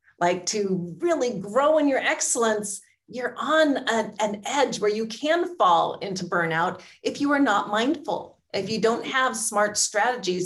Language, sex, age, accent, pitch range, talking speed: English, female, 30-49, American, 180-250 Hz, 165 wpm